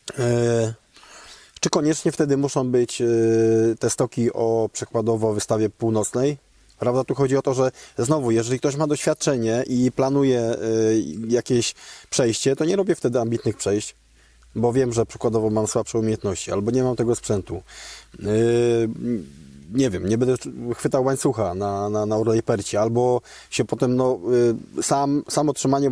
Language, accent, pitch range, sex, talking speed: Polish, native, 115-135 Hz, male, 155 wpm